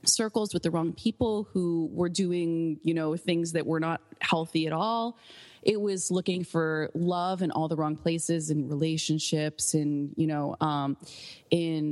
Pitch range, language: 155-175 Hz, English